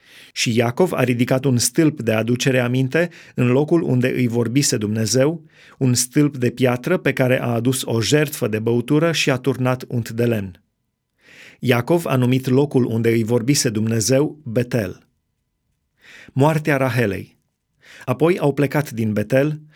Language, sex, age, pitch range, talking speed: Romanian, male, 30-49, 120-145 Hz, 150 wpm